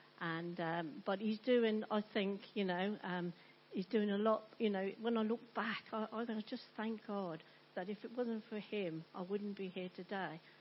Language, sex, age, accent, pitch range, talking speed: English, female, 50-69, British, 180-220 Hz, 205 wpm